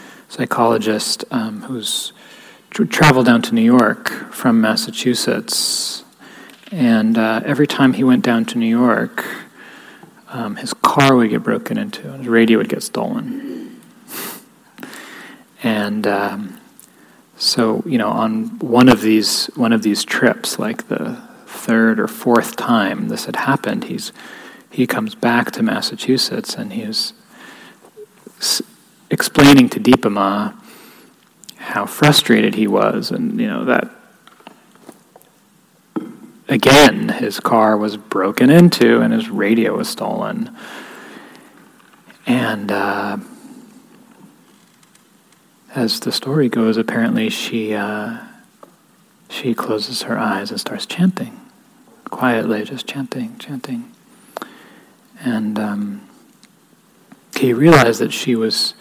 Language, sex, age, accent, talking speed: English, male, 30-49, American, 115 wpm